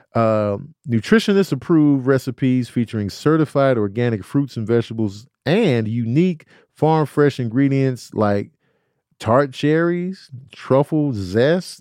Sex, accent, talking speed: male, American, 90 wpm